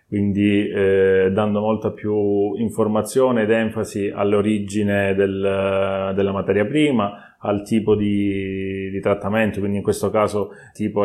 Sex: male